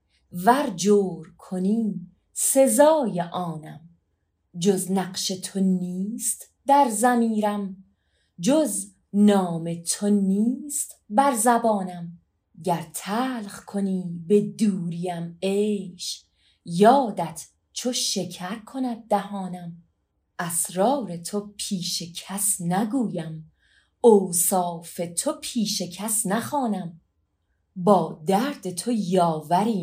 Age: 30-49